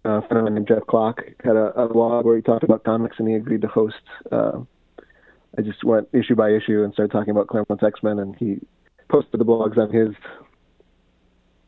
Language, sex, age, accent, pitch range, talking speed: English, male, 40-59, American, 95-115 Hz, 215 wpm